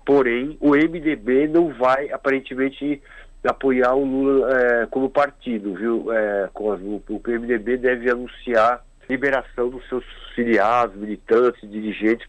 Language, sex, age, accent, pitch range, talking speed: Portuguese, male, 50-69, Brazilian, 115-135 Hz, 110 wpm